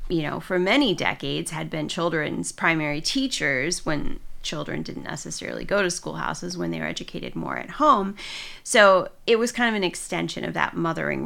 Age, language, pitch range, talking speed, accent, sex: 30-49, English, 160-200 Hz, 180 wpm, American, female